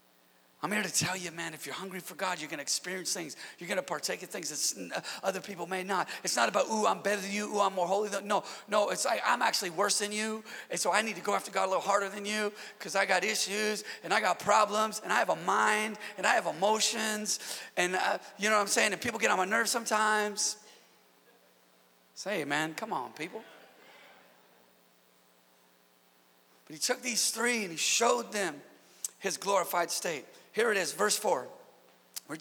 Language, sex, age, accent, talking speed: English, male, 40-59, American, 220 wpm